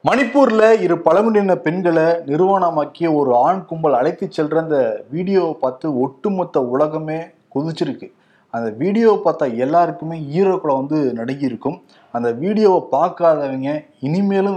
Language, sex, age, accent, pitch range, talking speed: Tamil, male, 30-49, native, 140-185 Hz, 110 wpm